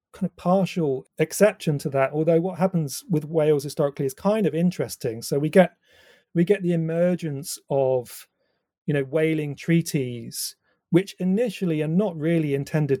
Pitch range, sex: 135-165 Hz, male